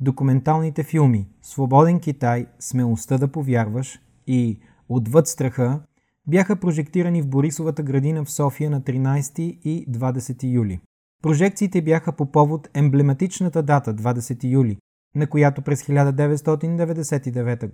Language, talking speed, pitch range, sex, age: Bulgarian, 115 wpm, 130-160 Hz, male, 30-49